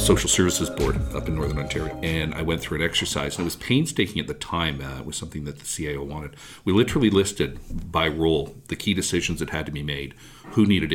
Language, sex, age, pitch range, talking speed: English, male, 50-69, 75-90 Hz, 235 wpm